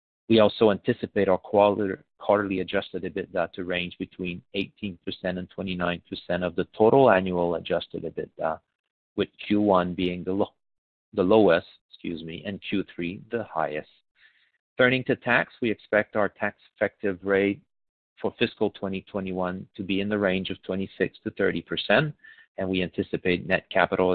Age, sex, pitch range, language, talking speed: 40-59, male, 90-100 Hz, English, 145 wpm